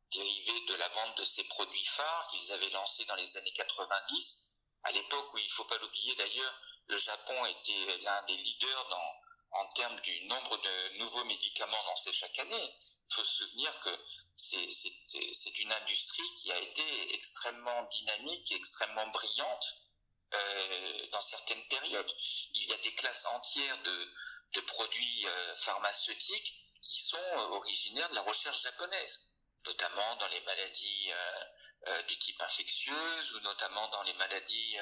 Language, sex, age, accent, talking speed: French, male, 50-69, French, 165 wpm